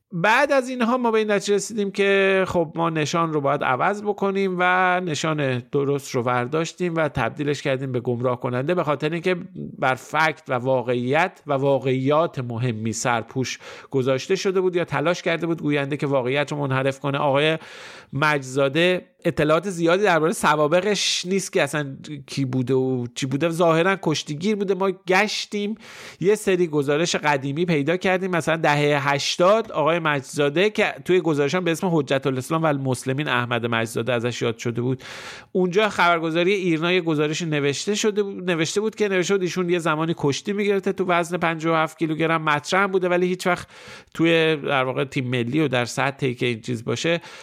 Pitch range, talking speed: 135-180 Hz, 170 wpm